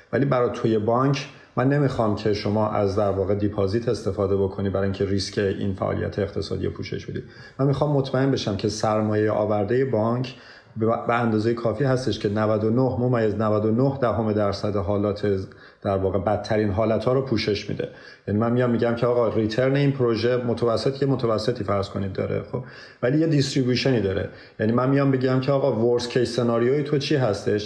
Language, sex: Persian, male